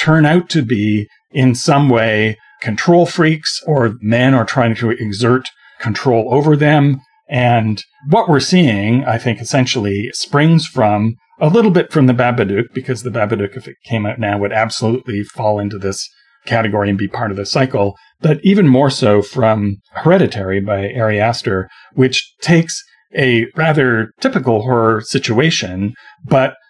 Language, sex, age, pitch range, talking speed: English, male, 40-59, 110-145 Hz, 155 wpm